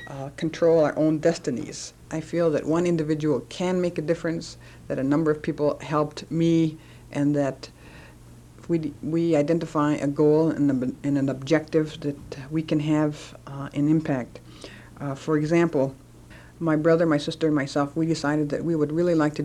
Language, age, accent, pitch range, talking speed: English, 60-79, American, 140-160 Hz, 180 wpm